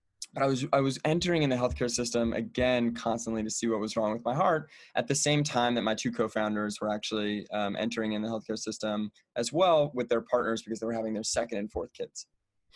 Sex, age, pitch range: male, 20-39, 110-130 Hz